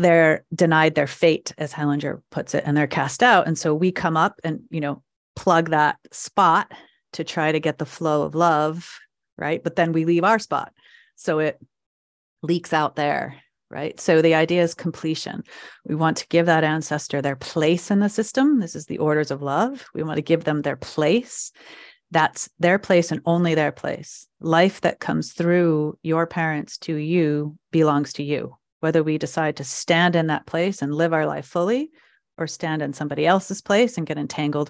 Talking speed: 195 wpm